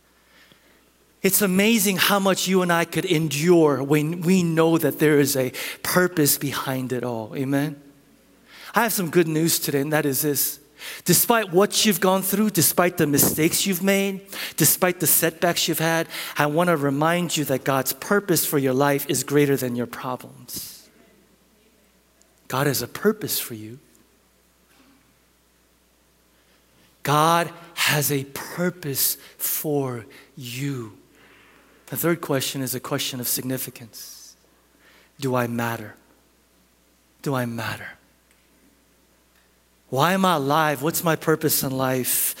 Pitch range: 130-175 Hz